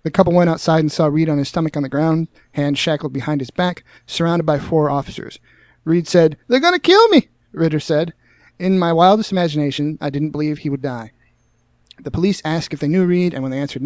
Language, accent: English, American